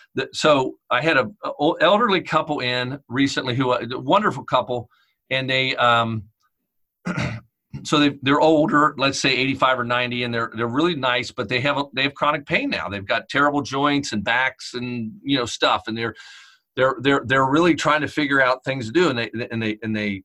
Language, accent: English, American